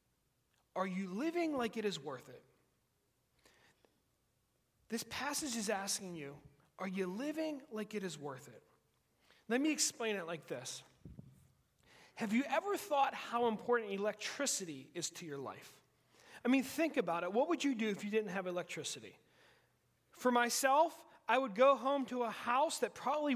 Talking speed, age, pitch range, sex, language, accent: 160 wpm, 30-49, 220-280 Hz, male, English, American